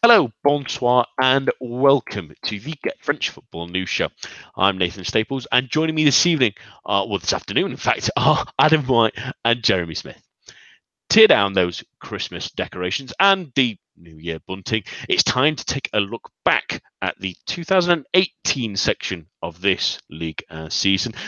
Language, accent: English, British